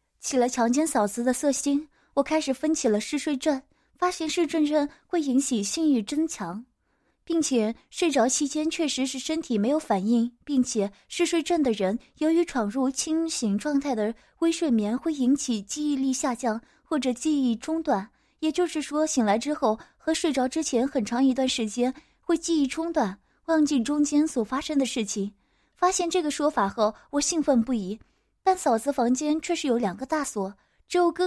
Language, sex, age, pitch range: Chinese, female, 20-39, 235-310 Hz